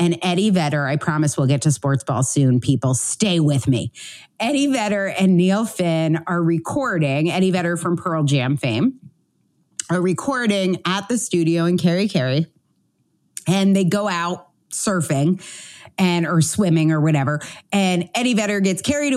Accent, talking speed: American, 160 wpm